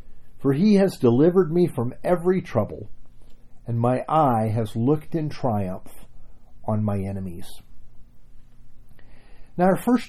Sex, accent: male, American